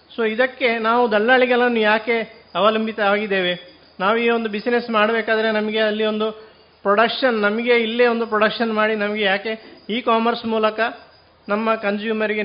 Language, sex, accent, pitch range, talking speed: Kannada, male, native, 200-225 Hz, 135 wpm